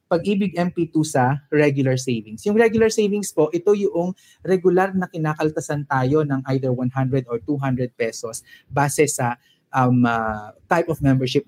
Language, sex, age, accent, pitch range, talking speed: English, male, 20-39, Filipino, 140-205 Hz, 145 wpm